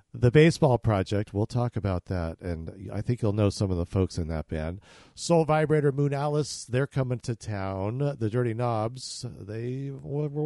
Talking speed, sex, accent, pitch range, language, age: 185 wpm, male, American, 100-135 Hz, English, 50-69